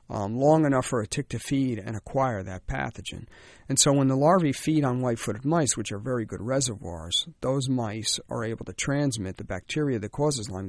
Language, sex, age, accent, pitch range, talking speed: English, male, 50-69, American, 100-135 Hz, 210 wpm